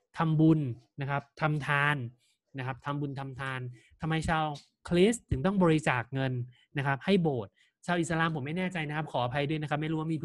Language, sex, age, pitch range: Thai, male, 20-39, 130-170 Hz